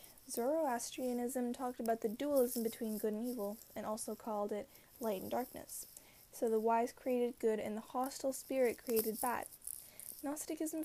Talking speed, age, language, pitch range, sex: 155 wpm, 10-29, English, 220-255 Hz, female